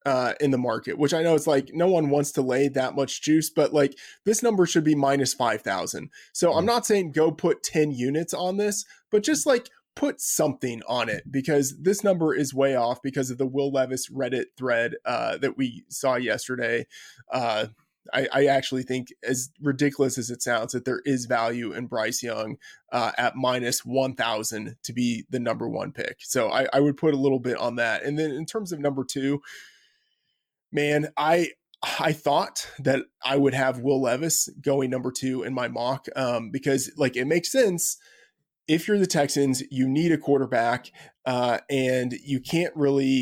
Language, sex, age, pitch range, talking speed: English, male, 20-39, 130-155 Hz, 195 wpm